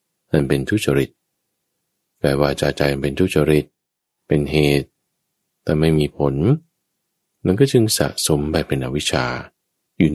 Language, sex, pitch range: Thai, male, 70-105 Hz